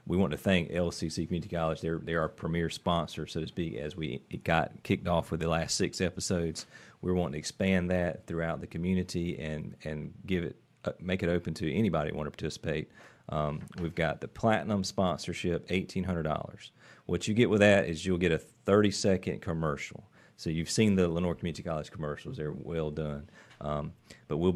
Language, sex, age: English, male, 40-59